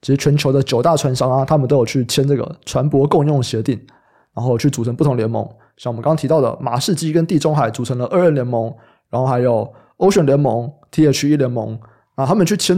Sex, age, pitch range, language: male, 20-39, 115-145 Hz, Chinese